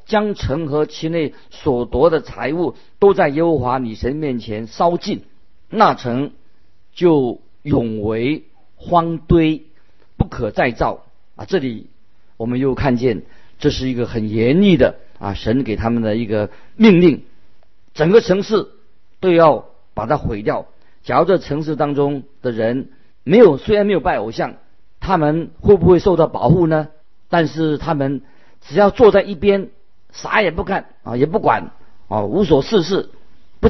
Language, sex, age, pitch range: Chinese, male, 50-69, 120-175 Hz